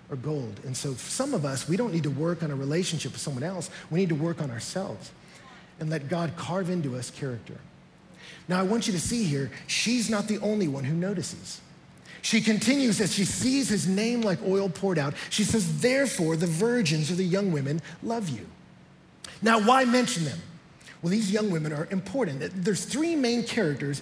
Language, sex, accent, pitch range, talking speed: English, male, American, 155-225 Hz, 200 wpm